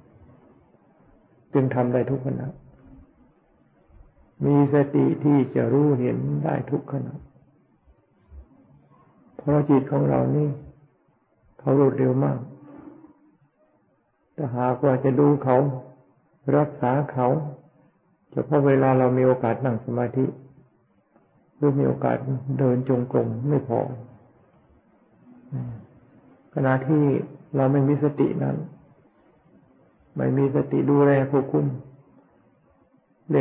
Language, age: Thai, 60-79